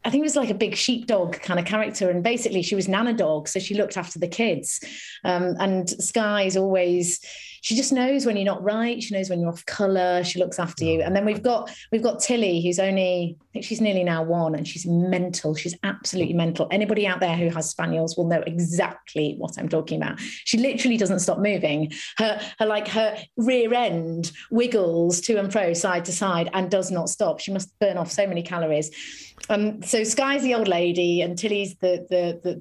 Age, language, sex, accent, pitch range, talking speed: 30-49, English, female, British, 170-220 Hz, 220 wpm